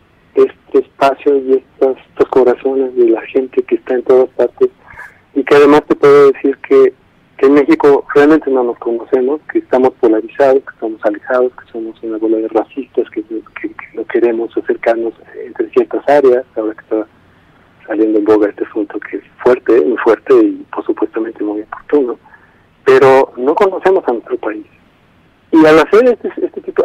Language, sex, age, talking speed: Spanish, male, 50-69, 175 wpm